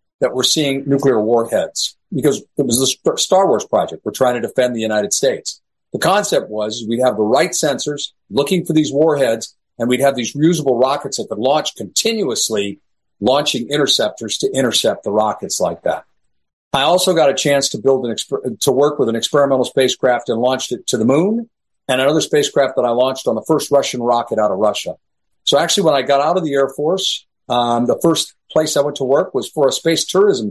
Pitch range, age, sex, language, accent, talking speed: 130-155 Hz, 50-69, male, English, American, 210 wpm